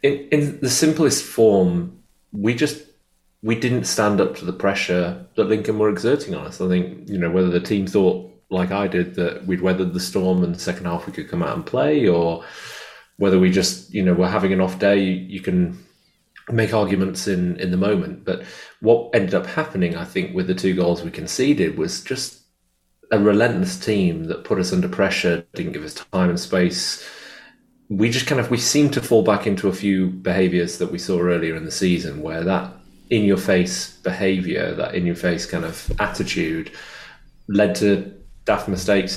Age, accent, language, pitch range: 30-49, British, English, 90-105 Hz